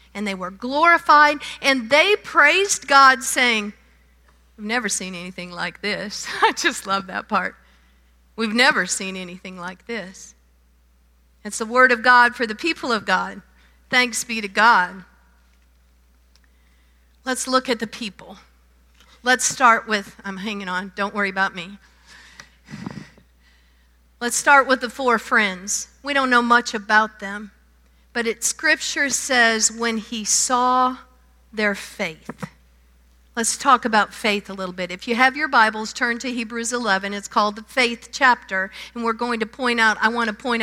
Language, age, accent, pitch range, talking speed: English, 50-69, American, 180-245 Hz, 160 wpm